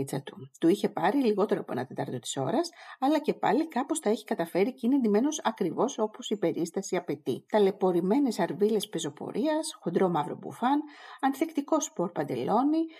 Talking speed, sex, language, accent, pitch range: 155 wpm, female, Greek, native, 185-275 Hz